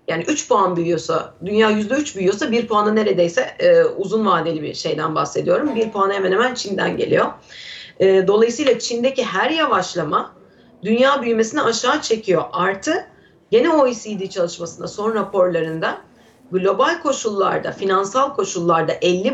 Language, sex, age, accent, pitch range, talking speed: Turkish, female, 40-59, native, 185-265 Hz, 130 wpm